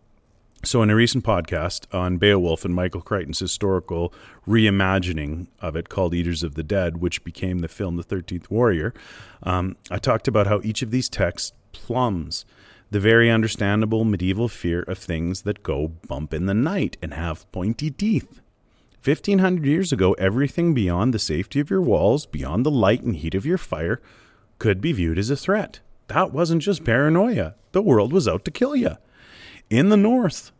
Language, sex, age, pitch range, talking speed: English, male, 30-49, 95-145 Hz, 180 wpm